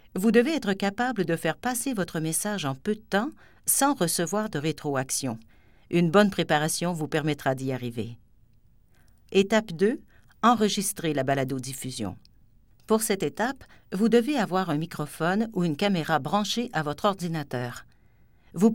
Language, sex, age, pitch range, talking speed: French, female, 50-69, 145-205 Hz, 145 wpm